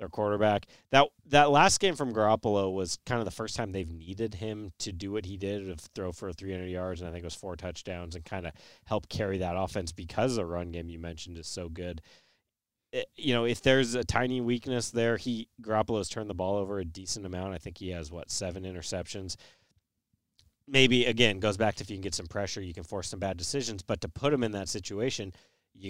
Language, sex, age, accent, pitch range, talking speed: English, male, 30-49, American, 90-110 Hz, 230 wpm